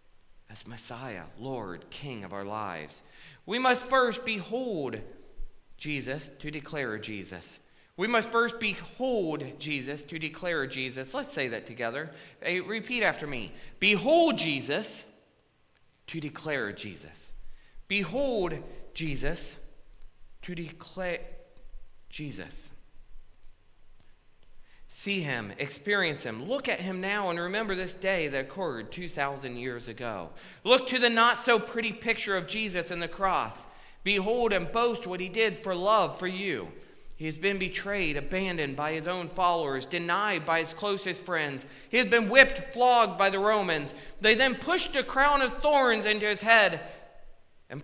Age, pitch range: 40-59, 140-215 Hz